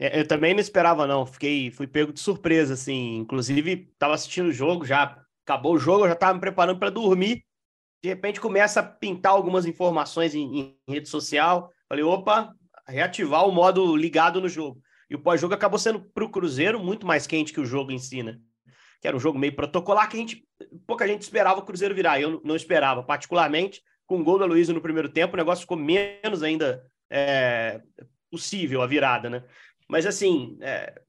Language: Portuguese